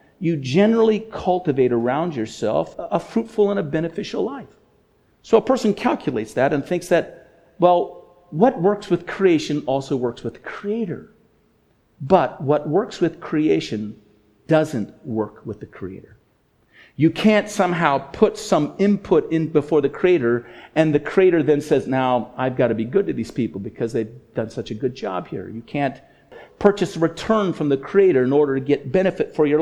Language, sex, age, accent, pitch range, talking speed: English, male, 50-69, American, 145-230 Hz, 175 wpm